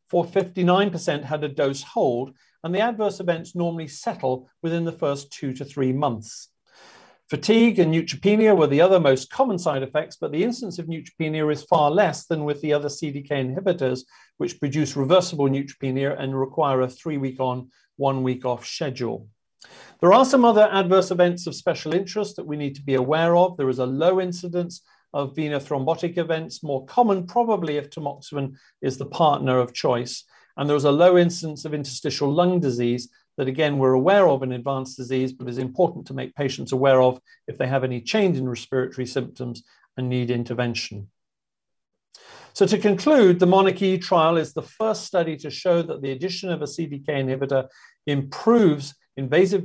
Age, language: 40-59, English